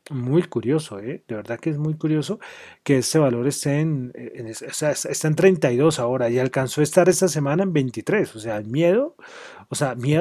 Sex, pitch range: male, 140-180 Hz